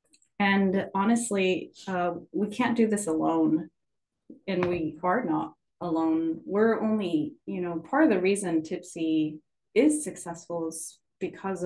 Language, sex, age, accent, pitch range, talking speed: English, female, 30-49, American, 160-185 Hz, 135 wpm